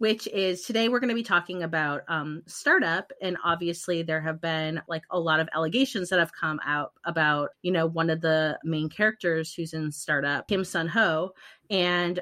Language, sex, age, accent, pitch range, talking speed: English, female, 30-49, American, 160-200 Hz, 195 wpm